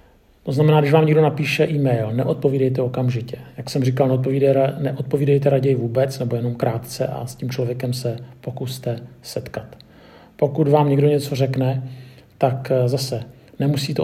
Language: Czech